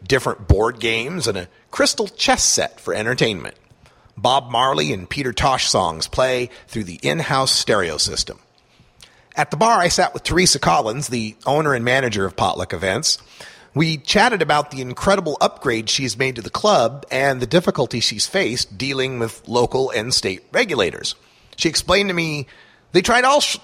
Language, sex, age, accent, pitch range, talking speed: English, male, 40-59, American, 120-175 Hz, 170 wpm